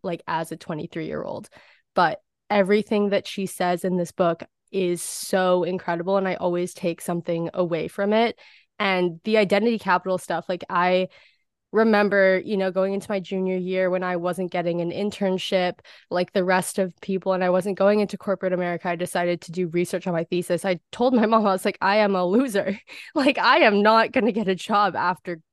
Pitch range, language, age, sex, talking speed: 180-210 Hz, English, 20-39, female, 205 wpm